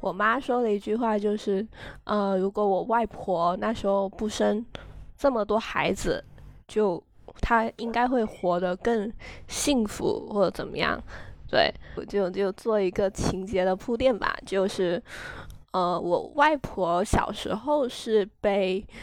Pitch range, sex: 195-230 Hz, female